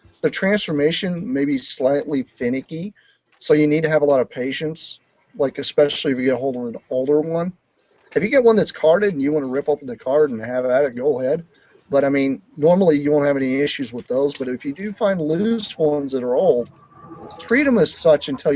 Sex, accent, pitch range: male, American, 125-165 Hz